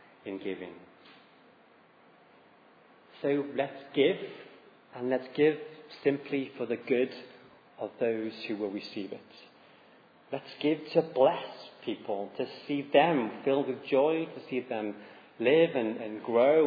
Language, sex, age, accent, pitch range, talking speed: English, male, 30-49, British, 110-145 Hz, 130 wpm